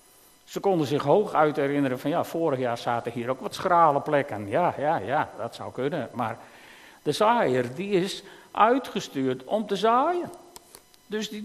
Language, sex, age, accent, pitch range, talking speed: Dutch, male, 50-69, Dutch, 160-215 Hz, 175 wpm